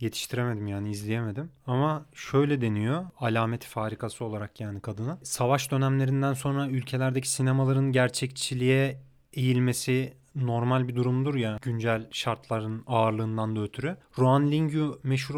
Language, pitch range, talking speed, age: Turkish, 120-145 Hz, 115 wpm, 30-49